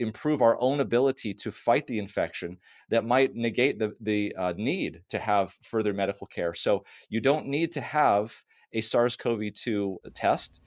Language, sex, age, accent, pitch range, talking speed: English, male, 30-49, American, 100-115 Hz, 165 wpm